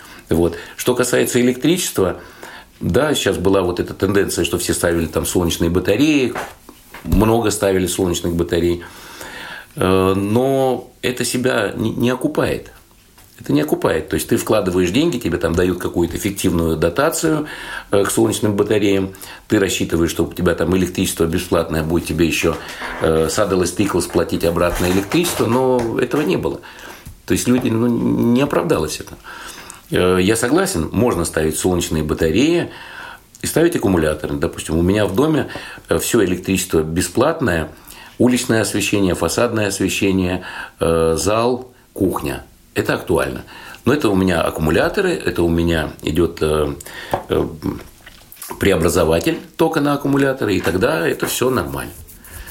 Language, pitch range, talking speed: Russian, 85-115 Hz, 130 wpm